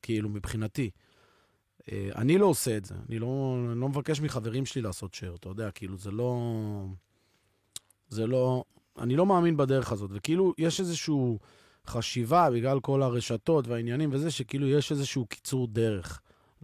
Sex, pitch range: male, 110-140 Hz